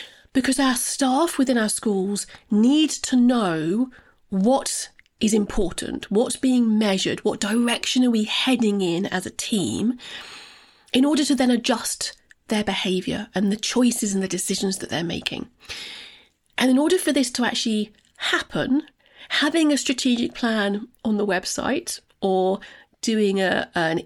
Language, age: English, 30-49